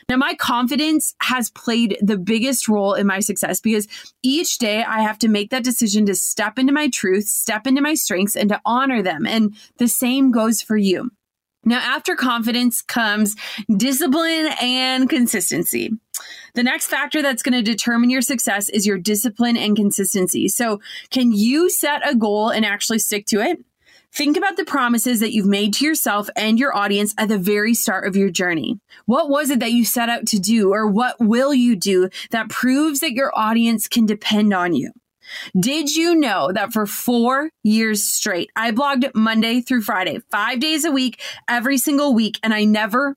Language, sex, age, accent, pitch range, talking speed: English, female, 20-39, American, 210-260 Hz, 190 wpm